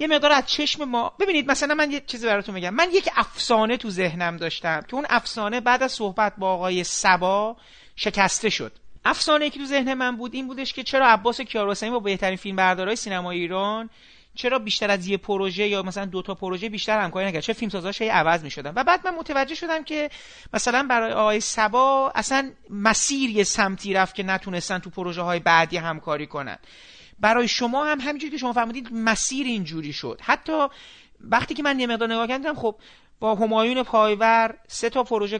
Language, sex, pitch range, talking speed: Persian, male, 185-245 Hz, 185 wpm